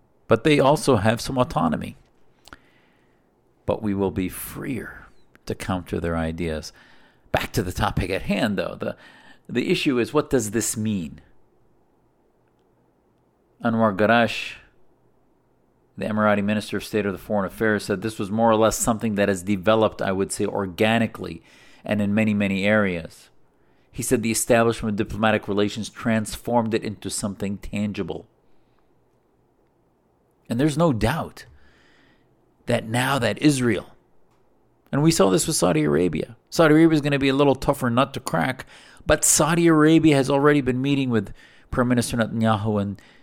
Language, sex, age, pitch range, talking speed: English, male, 50-69, 100-120 Hz, 155 wpm